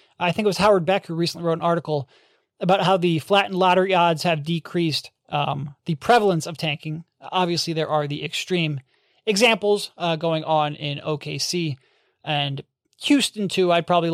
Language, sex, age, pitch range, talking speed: English, male, 30-49, 155-195 Hz, 170 wpm